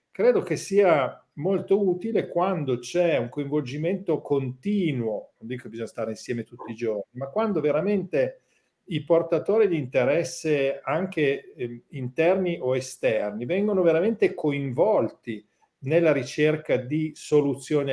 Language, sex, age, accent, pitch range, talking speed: Italian, male, 50-69, native, 120-175 Hz, 125 wpm